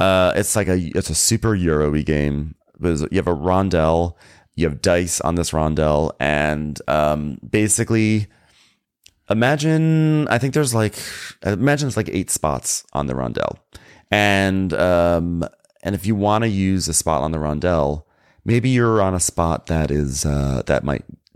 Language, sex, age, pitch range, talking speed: English, male, 30-49, 75-100 Hz, 165 wpm